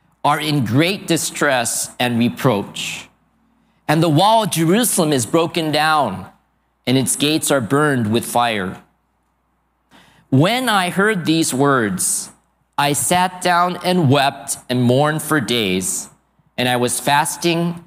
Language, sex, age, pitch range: Japanese, male, 50-69, 140-180 Hz